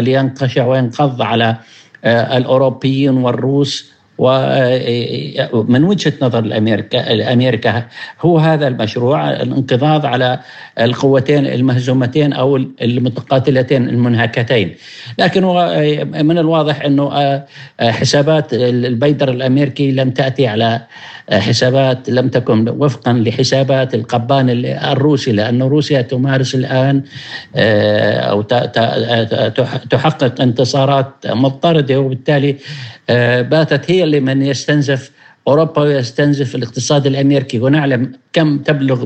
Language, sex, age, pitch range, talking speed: Arabic, male, 50-69, 125-145 Hz, 90 wpm